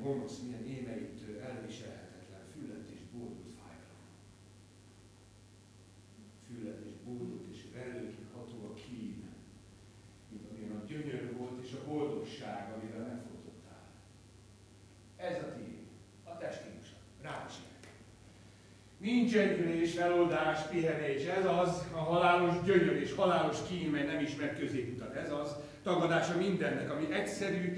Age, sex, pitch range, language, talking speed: 60-79, male, 110-180 Hz, Hungarian, 120 wpm